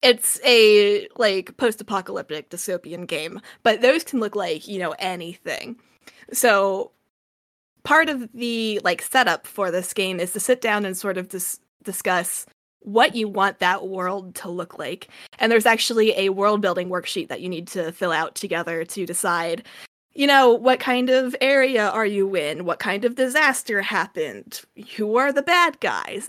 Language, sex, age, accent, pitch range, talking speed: English, female, 20-39, American, 180-235 Hz, 165 wpm